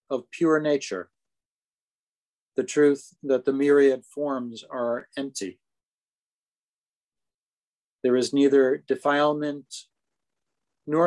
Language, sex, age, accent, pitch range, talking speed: English, male, 40-59, American, 130-150 Hz, 85 wpm